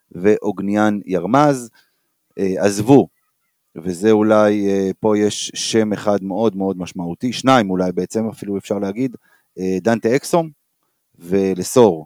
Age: 30-49